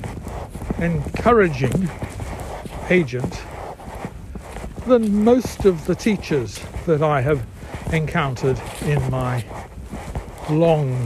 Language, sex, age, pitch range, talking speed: English, male, 60-79, 130-175 Hz, 75 wpm